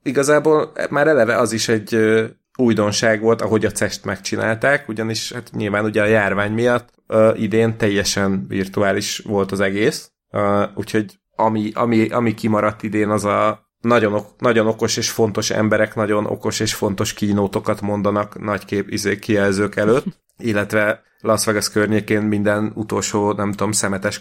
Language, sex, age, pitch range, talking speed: Hungarian, male, 30-49, 105-115 Hz, 150 wpm